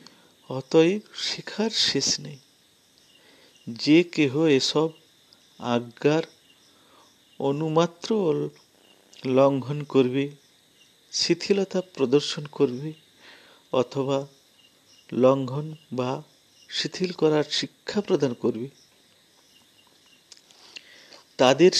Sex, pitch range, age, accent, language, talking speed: male, 130-155 Hz, 50-69, native, Bengali, 40 wpm